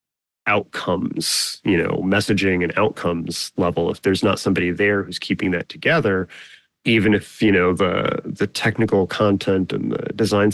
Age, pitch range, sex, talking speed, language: 30-49, 90-105 Hz, male, 155 wpm, English